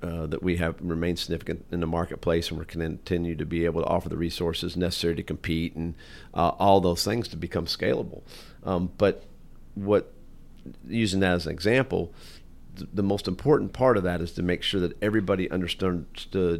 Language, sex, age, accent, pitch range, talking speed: English, male, 40-59, American, 85-95 Hz, 190 wpm